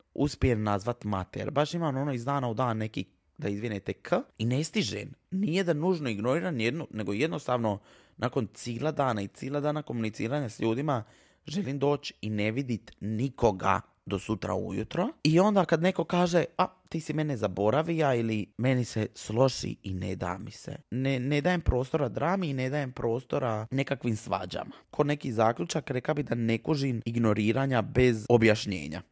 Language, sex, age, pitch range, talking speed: Croatian, male, 20-39, 110-140 Hz, 170 wpm